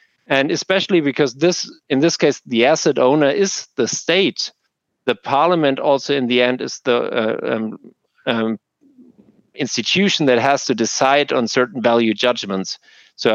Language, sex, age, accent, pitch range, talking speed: English, male, 50-69, German, 115-145 Hz, 155 wpm